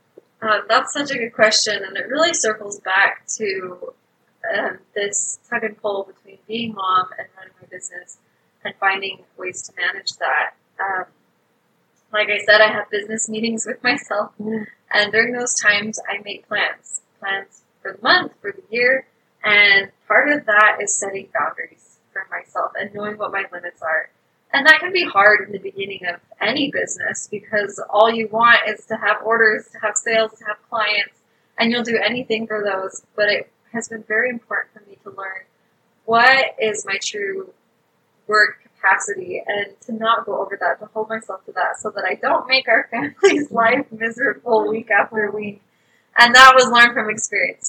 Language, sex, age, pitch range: English, female, 20-39, 200-235 Hz